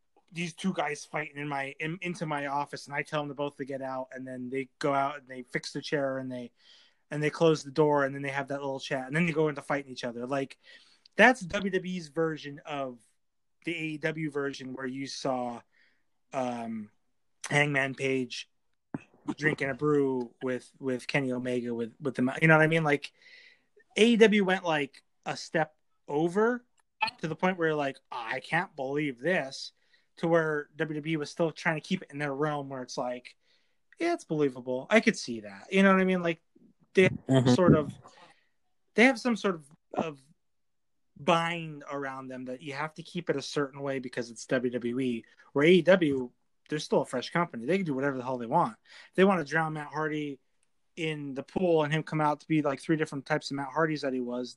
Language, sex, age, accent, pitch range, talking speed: English, male, 30-49, American, 135-165 Hz, 210 wpm